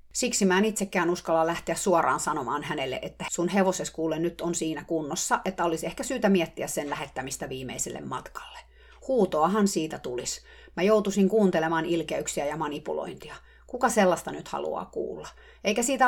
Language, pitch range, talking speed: Finnish, 160-215 Hz, 155 wpm